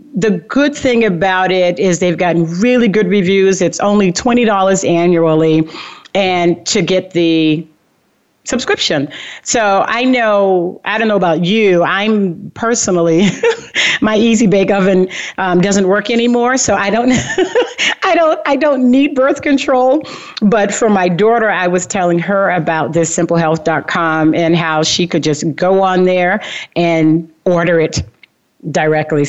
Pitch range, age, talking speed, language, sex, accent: 170-220 Hz, 40-59, 150 wpm, English, female, American